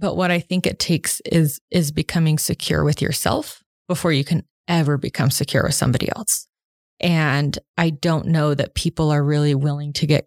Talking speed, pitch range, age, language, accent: 185 wpm, 145-170 Hz, 20-39, English, American